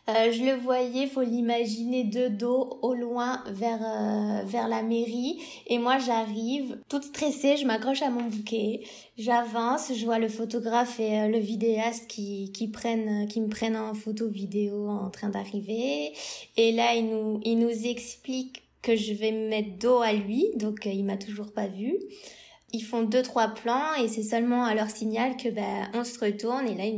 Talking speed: 195 wpm